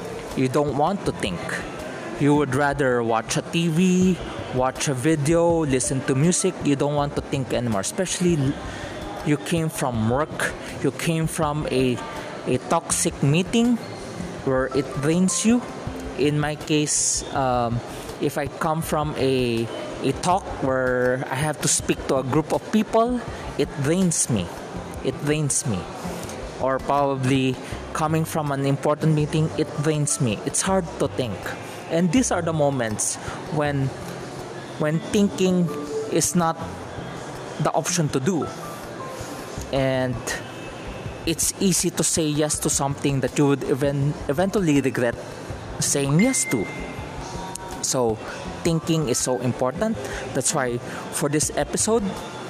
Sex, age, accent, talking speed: male, 20-39, Filipino, 140 wpm